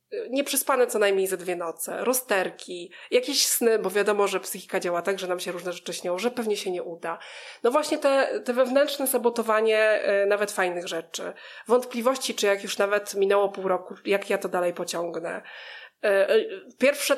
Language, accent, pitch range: Polish, native, 195-255 Hz